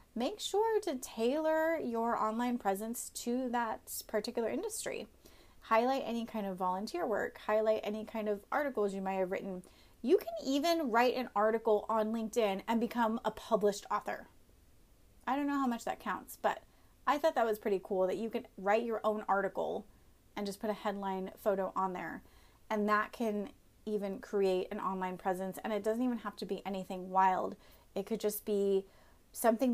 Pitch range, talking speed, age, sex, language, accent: 200-240 Hz, 180 wpm, 30-49, female, English, American